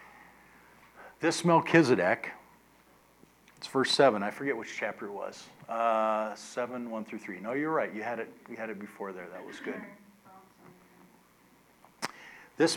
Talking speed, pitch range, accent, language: 135 wpm, 115-165 Hz, American, English